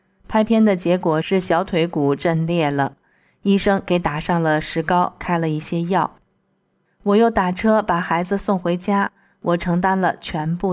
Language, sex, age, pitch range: Chinese, female, 20-39, 160-195 Hz